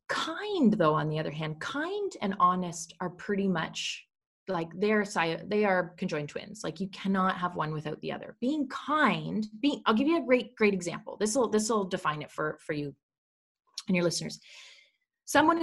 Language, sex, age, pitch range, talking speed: English, female, 20-39, 165-235 Hz, 190 wpm